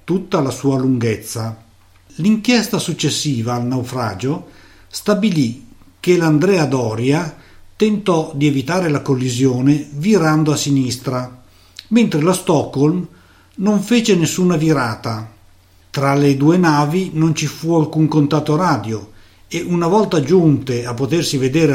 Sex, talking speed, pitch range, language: male, 120 wpm, 120-170 Hz, Italian